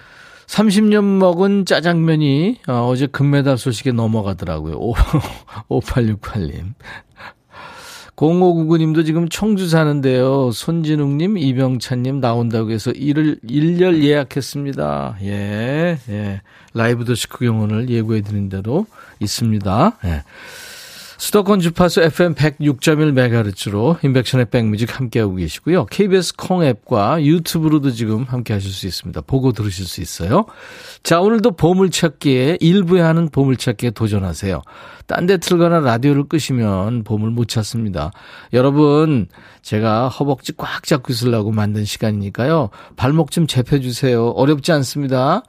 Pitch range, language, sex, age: 115-170 Hz, Korean, male, 40-59